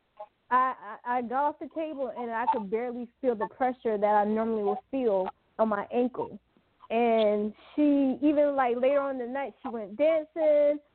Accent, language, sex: American, English, female